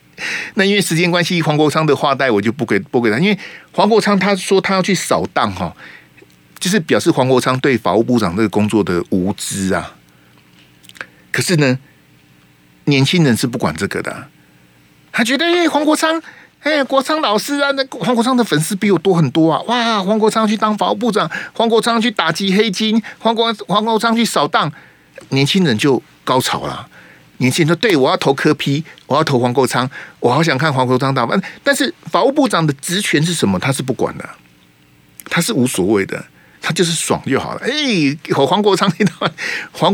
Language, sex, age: Chinese, male, 50-69